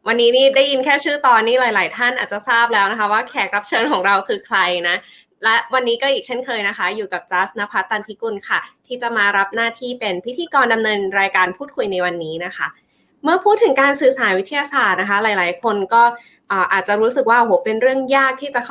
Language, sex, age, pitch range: Thai, female, 20-39, 205-265 Hz